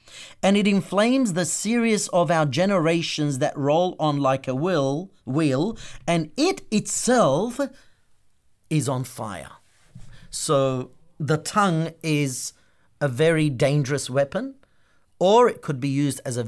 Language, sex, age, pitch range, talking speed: English, male, 40-59, 130-170 Hz, 125 wpm